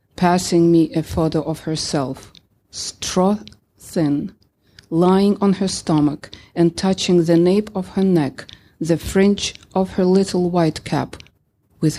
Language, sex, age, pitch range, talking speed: English, female, 40-59, 125-185 Hz, 130 wpm